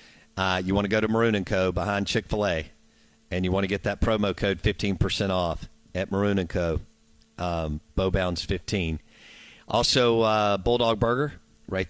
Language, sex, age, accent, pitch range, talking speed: English, male, 50-69, American, 95-110 Hz, 165 wpm